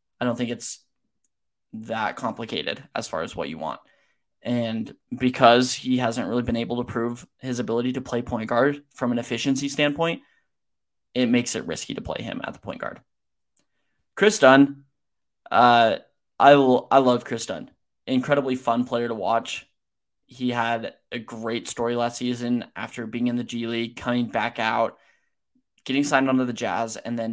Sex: male